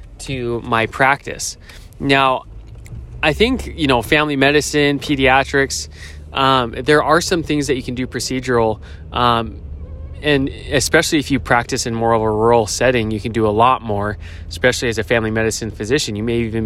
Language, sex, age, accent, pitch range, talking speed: English, male, 20-39, American, 110-140 Hz, 175 wpm